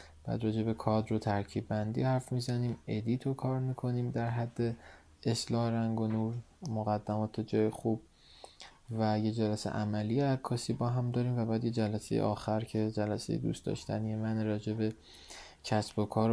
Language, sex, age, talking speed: Persian, male, 20-39, 160 wpm